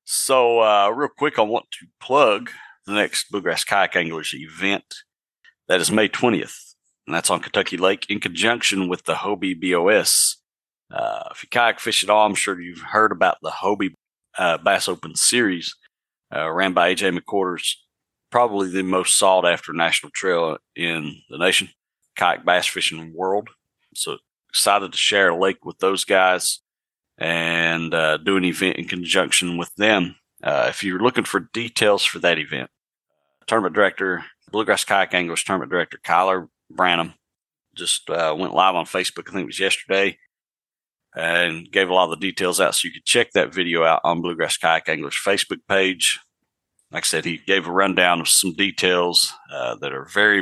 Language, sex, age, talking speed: English, male, 40-59, 175 wpm